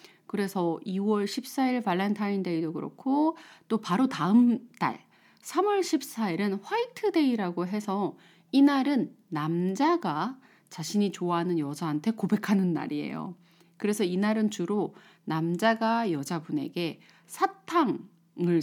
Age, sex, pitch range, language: 30-49, female, 180-275 Hz, Korean